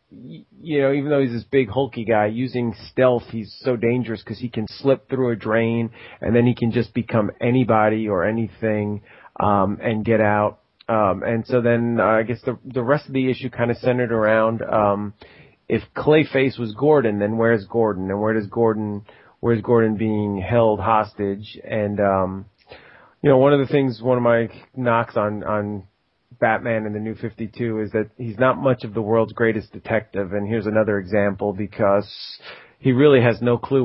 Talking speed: 190 wpm